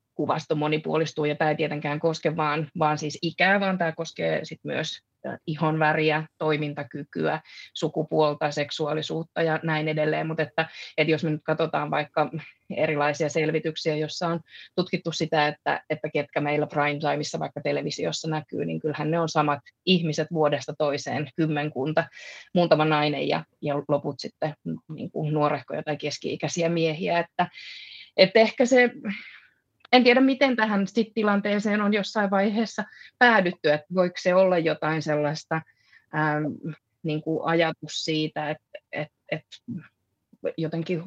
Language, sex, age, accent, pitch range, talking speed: Finnish, female, 20-39, native, 150-170 Hz, 135 wpm